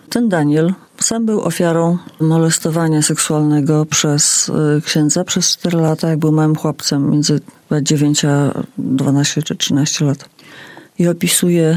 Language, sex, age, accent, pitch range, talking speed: English, female, 40-59, Polish, 160-205 Hz, 125 wpm